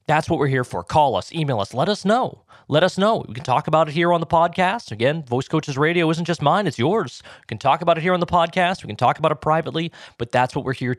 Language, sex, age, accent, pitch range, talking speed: English, male, 30-49, American, 120-170 Hz, 290 wpm